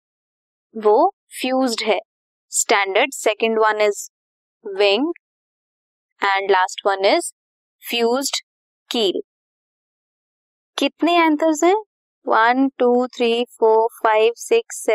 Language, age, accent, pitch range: Hindi, 20-39, native, 220-315 Hz